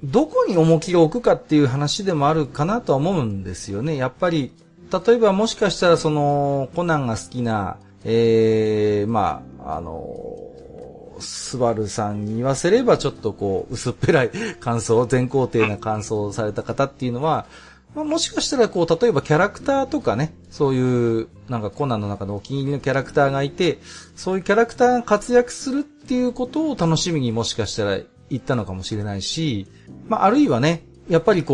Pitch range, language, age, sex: 110-165 Hz, Japanese, 40-59, male